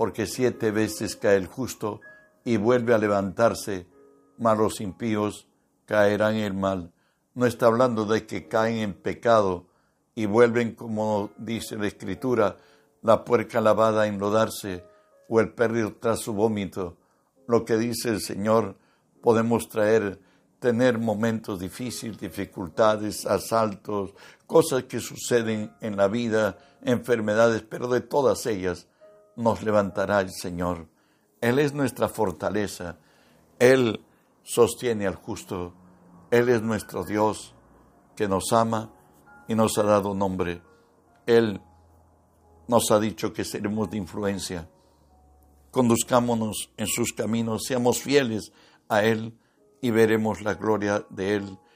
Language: Spanish